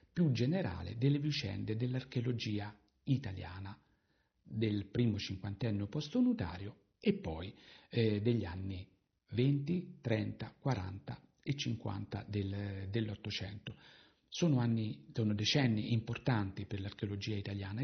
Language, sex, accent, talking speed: Italian, male, native, 100 wpm